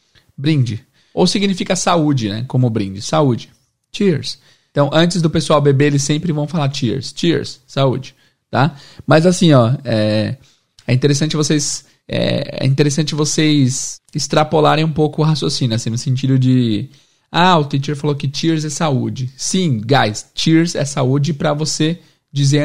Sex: male